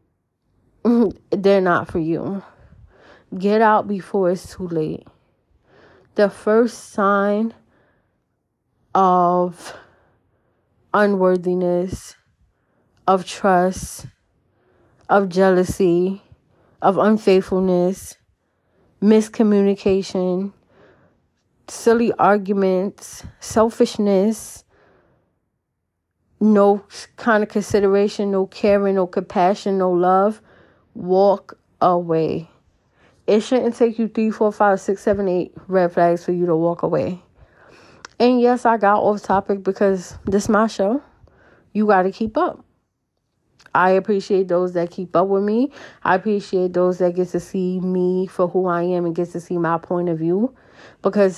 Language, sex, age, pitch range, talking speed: English, female, 20-39, 175-205 Hz, 115 wpm